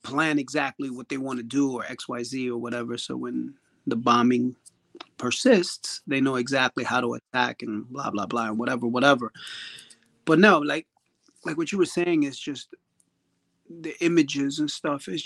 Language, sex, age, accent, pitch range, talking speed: English, male, 30-49, American, 125-160 Hz, 170 wpm